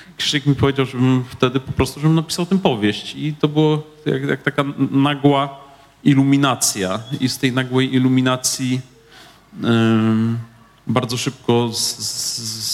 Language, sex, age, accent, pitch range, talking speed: Polish, male, 40-59, native, 115-140 Hz, 140 wpm